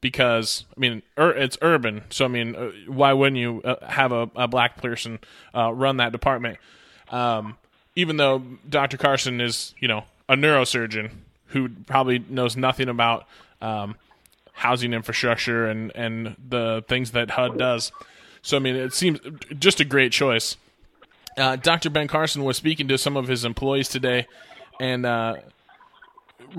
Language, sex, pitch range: English, male, 120-155 Hz